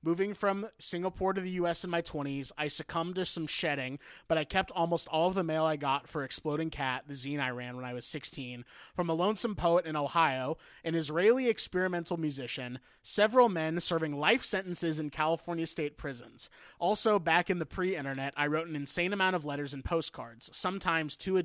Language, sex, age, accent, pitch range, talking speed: English, male, 20-39, American, 140-175 Hz, 200 wpm